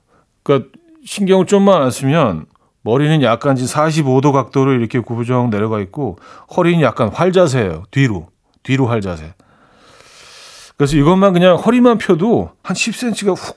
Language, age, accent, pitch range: Korean, 40-59, native, 115-165 Hz